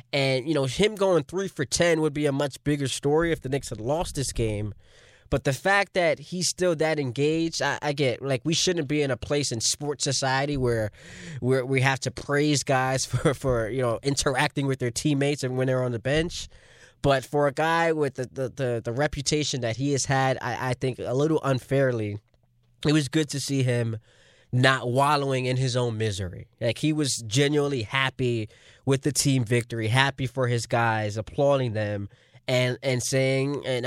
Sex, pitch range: male, 125-150 Hz